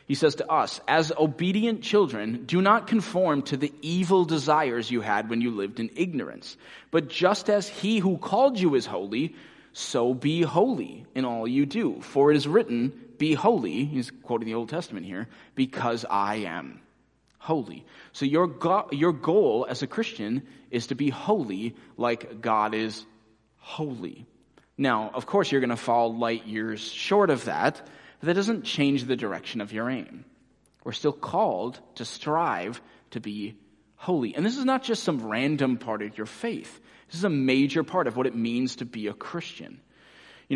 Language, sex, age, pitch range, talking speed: English, male, 30-49, 115-160 Hz, 180 wpm